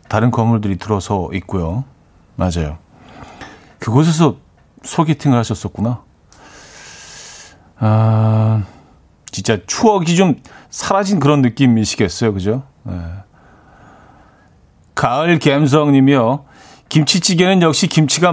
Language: Korean